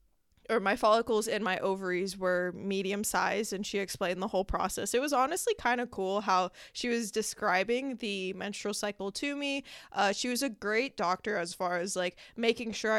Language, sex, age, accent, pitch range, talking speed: English, female, 20-39, American, 195-240 Hz, 195 wpm